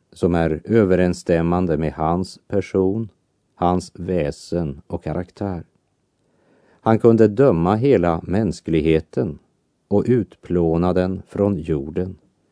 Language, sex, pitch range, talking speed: Dutch, male, 85-105 Hz, 95 wpm